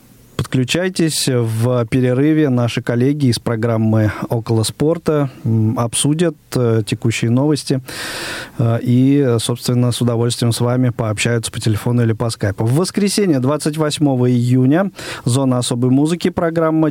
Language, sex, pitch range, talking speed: Russian, male, 120-155 Hz, 115 wpm